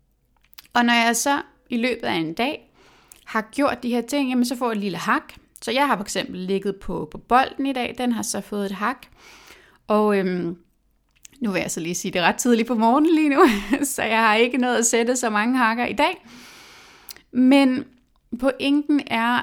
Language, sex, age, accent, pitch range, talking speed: Danish, female, 30-49, native, 205-255 Hz, 215 wpm